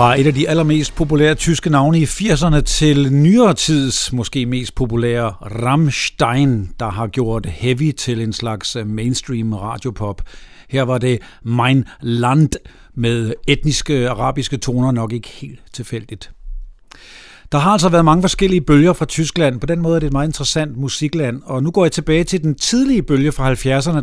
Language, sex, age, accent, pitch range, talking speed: Danish, male, 50-69, native, 125-160 Hz, 170 wpm